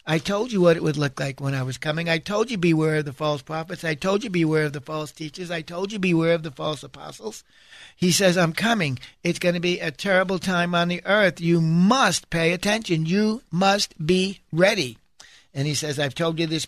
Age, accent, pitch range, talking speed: 60-79, American, 150-180 Hz, 235 wpm